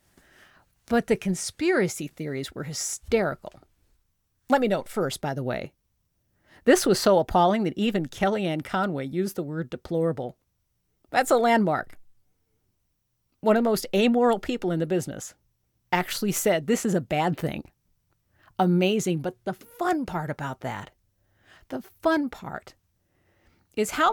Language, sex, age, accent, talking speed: English, female, 50-69, American, 140 wpm